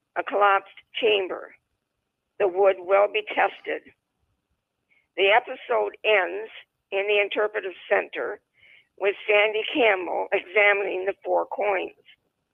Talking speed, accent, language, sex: 105 wpm, American, English, female